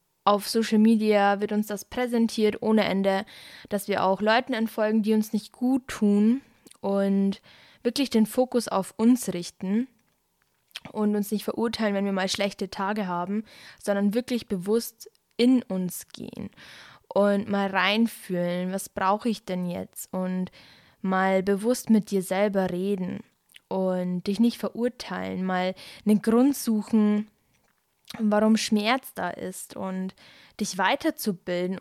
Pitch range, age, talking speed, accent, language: 195-225 Hz, 10-29, 140 wpm, German, German